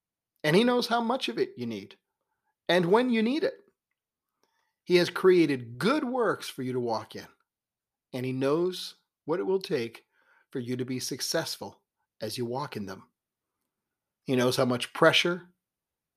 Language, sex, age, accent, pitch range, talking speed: English, male, 40-59, American, 130-210 Hz, 170 wpm